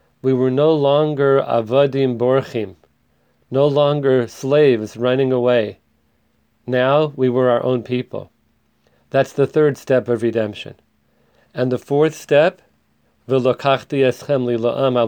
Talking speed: 110 wpm